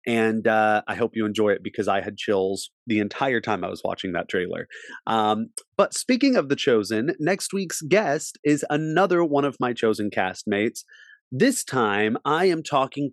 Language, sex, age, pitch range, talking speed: English, male, 30-49, 115-150 Hz, 185 wpm